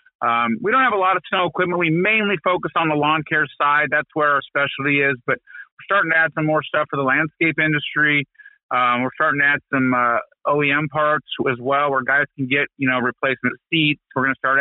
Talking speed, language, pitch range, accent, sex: 235 wpm, English, 130-160 Hz, American, male